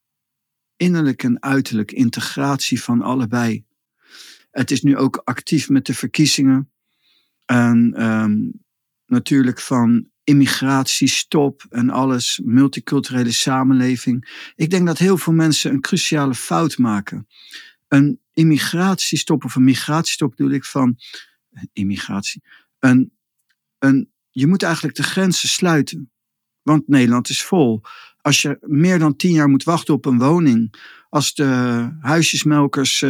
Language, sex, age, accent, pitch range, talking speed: Dutch, male, 50-69, Dutch, 130-155 Hz, 125 wpm